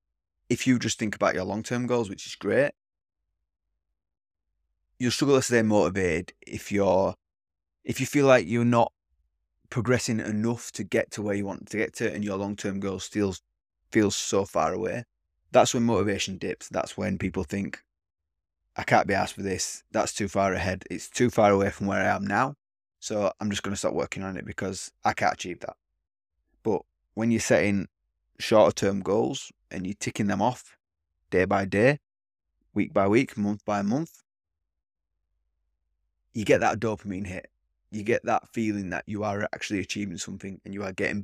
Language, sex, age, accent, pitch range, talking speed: English, male, 20-39, British, 80-105 Hz, 180 wpm